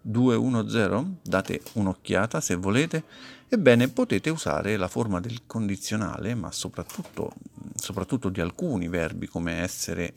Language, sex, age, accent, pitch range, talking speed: Italian, male, 50-69, native, 90-125 Hz, 120 wpm